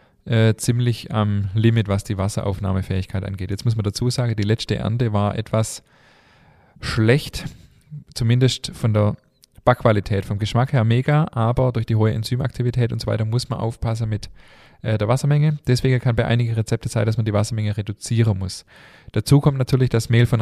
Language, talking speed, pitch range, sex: German, 170 wpm, 105-125 Hz, male